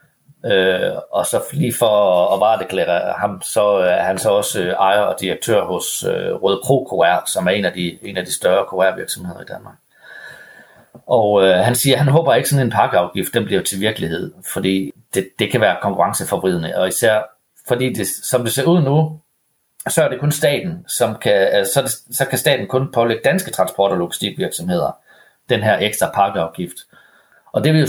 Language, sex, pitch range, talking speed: Danish, male, 100-145 Hz, 200 wpm